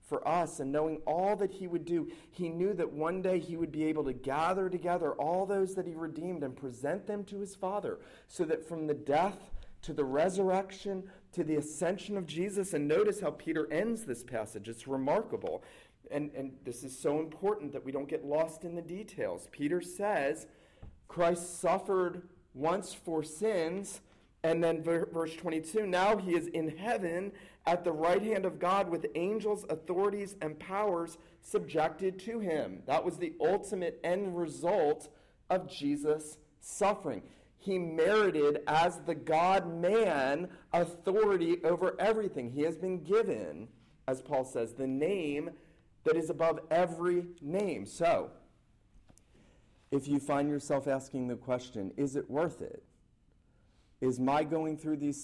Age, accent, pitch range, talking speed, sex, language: 40-59, American, 150-190 Hz, 160 wpm, male, English